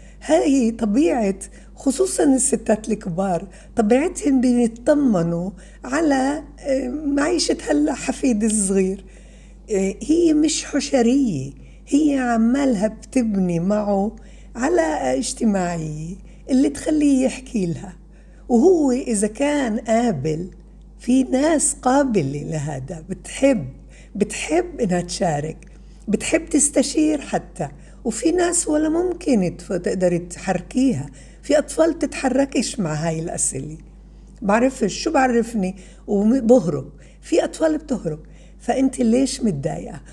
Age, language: 60-79, Arabic